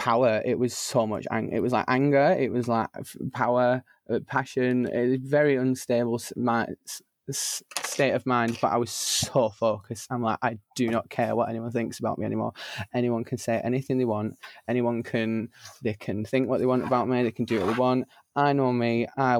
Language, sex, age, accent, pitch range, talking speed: English, male, 20-39, British, 115-135 Hz, 215 wpm